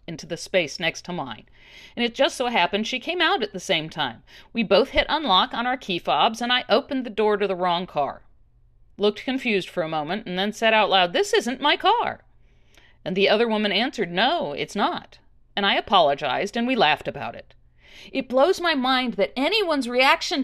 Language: English